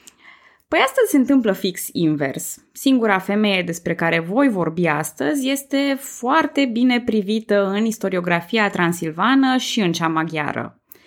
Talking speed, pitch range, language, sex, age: 130 wpm, 180-255 Hz, Romanian, female, 20-39